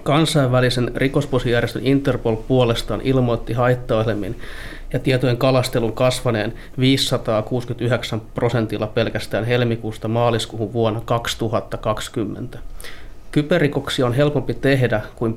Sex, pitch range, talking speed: male, 110-130 Hz, 85 wpm